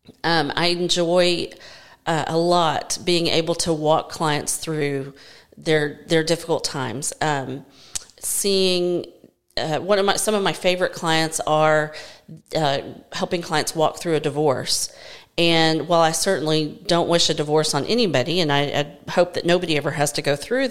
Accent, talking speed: American, 160 wpm